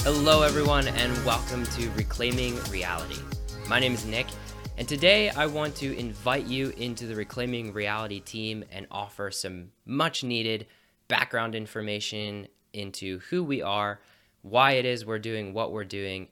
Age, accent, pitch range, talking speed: 20-39, American, 100-125 Hz, 155 wpm